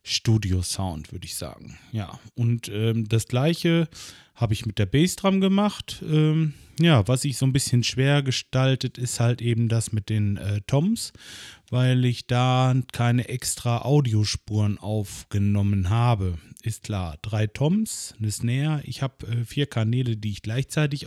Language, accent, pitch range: German, German, 105-130 Hz